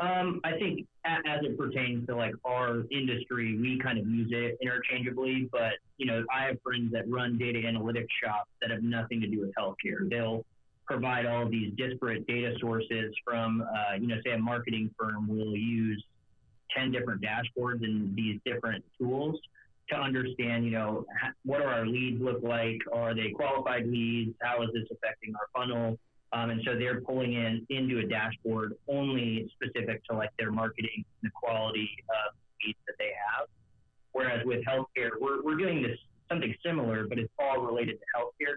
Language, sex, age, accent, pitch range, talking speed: English, male, 30-49, American, 110-125 Hz, 180 wpm